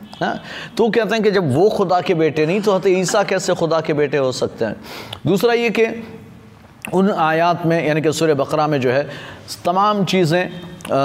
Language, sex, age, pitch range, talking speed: Hindi, male, 30-49, 145-185 Hz, 185 wpm